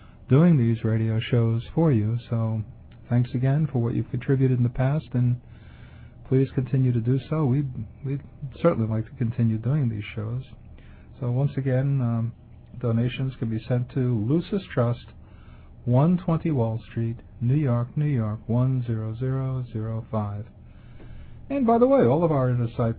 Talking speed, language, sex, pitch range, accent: 150 wpm, English, male, 115-140 Hz, American